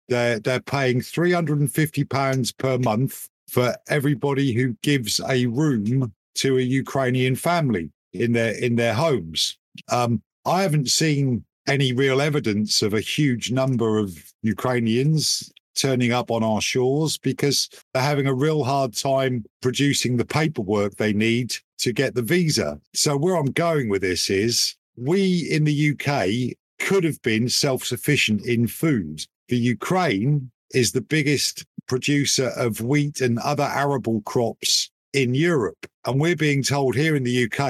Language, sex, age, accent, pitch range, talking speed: English, male, 50-69, British, 115-140 Hz, 150 wpm